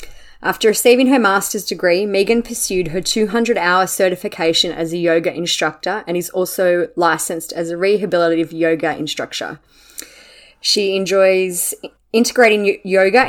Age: 20-39